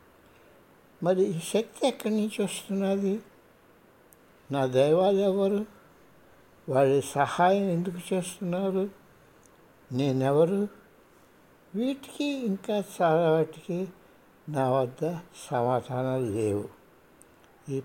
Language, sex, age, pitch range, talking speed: Hindi, male, 60-79, 135-205 Hz, 45 wpm